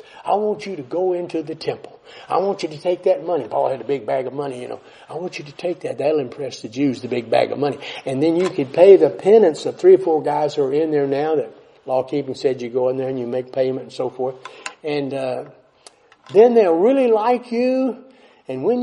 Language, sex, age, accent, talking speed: English, male, 60-79, American, 255 wpm